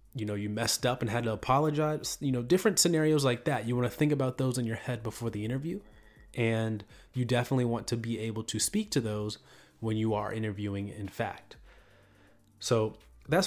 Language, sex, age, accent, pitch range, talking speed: English, male, 30-49, American, 105-125 Hz, 205 wpm